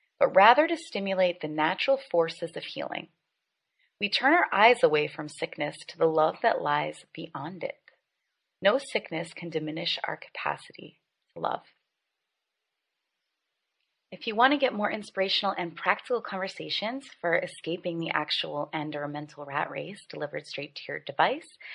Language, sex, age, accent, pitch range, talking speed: English, female, 30-49, American, 160-230 Hz, 150 wpm